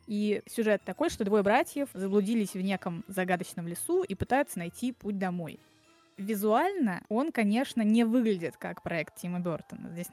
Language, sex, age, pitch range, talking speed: Russian, female, 20-39, 185-230 Hz, 155 wpm